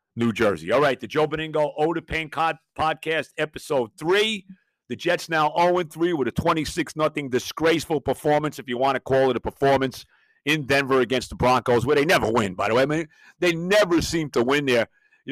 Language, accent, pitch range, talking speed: English, American, 115-150 Hz, 205 wpm